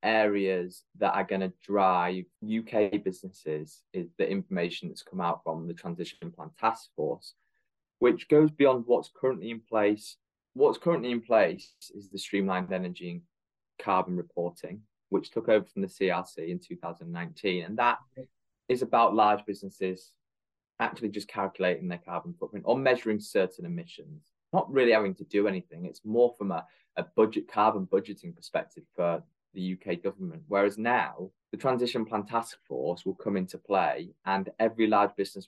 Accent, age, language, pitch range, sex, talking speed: British, 20-39, English, 95-115 Hz, male, 160 wpm